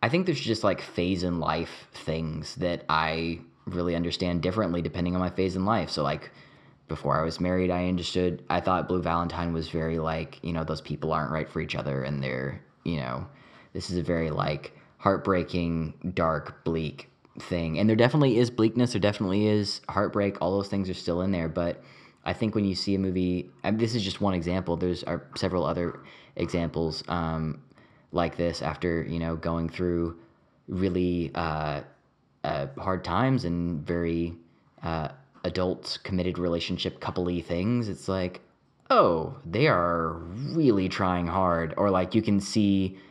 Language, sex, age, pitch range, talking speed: English, male, 20-39, 80-95 Hz, 175 wpm